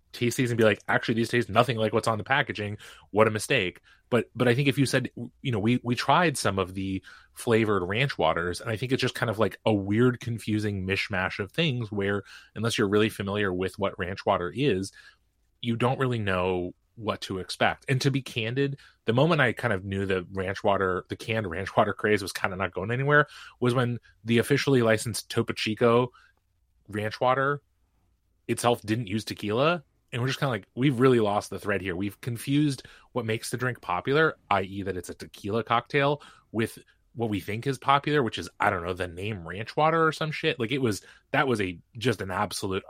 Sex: male